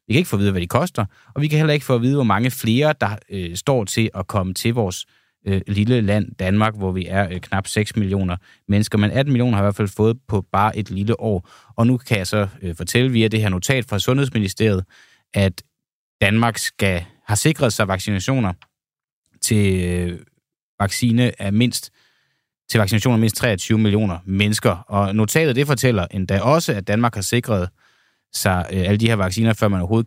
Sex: male